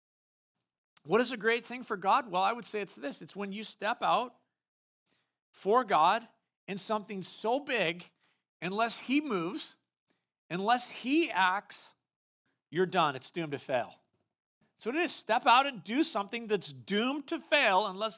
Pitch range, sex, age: 180-255 Hz, male, 50-69